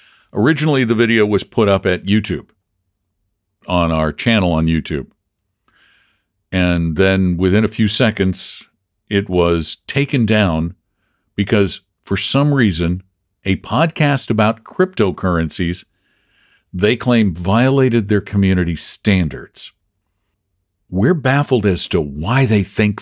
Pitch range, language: 95-140 Hz, English